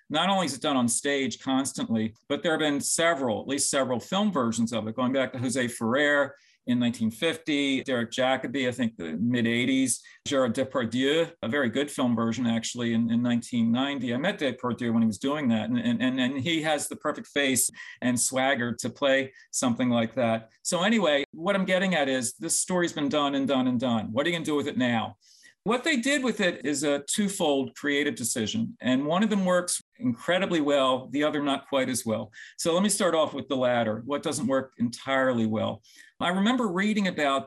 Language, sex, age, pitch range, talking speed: English, male, 40-59, 125-195 Hz, 215 wpm